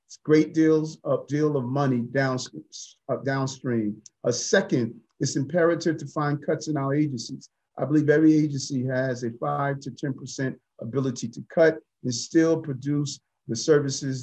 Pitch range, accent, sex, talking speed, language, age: 130-155 Hz, American, male, 160 wpm, English, 40-59